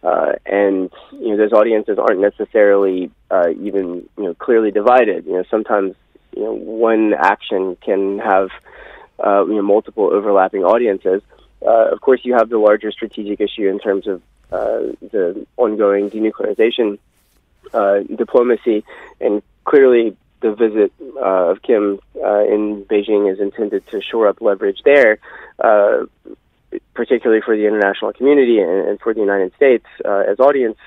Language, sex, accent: English, male, American